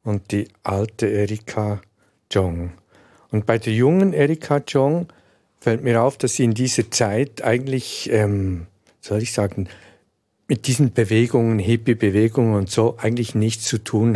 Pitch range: 110-135 Hz